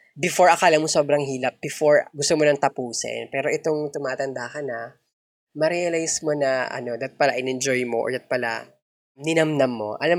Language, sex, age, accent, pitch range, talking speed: Filipino, female, 20-39, native, 125-160 Hz, 170 wpm